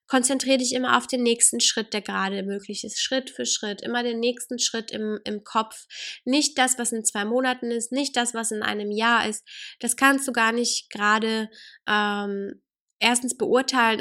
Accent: German